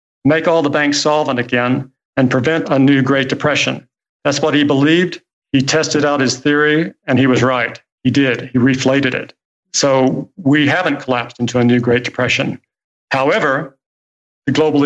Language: English